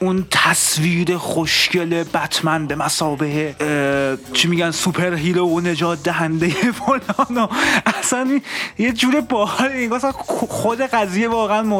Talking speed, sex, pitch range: 105 wpm, male, 150-215 Hz